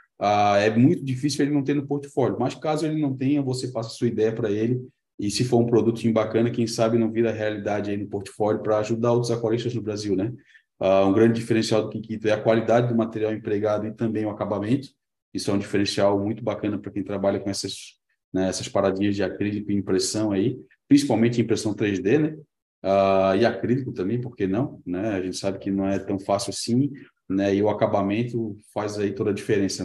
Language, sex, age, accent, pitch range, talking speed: Portuguese, male, 20-39, Brazilian, 100-115 Hz, 200 wpm